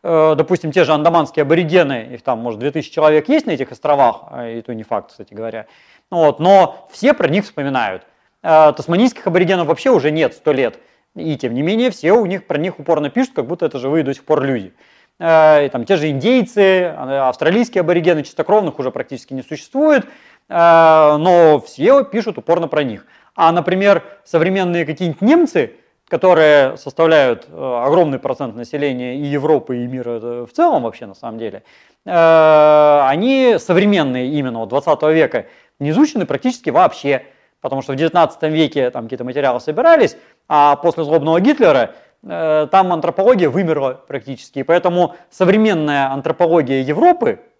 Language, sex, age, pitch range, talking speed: Russian, male, 30-49, 140-185 Hz, 155 wpm